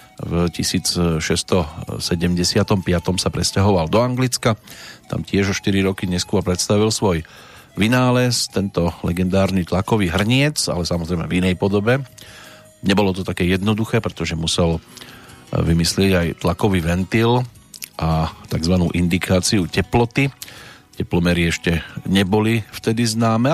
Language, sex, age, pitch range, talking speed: Slovak, male, 40-59, 90-110 Hz, 110 wpm